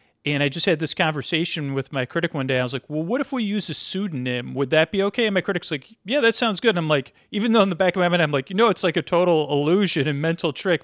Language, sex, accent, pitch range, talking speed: English, male, American, 140-175 Hz, 310 wpm